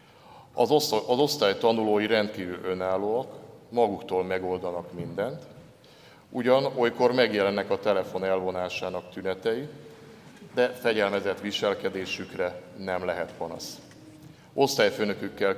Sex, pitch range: male, 90-110 Hz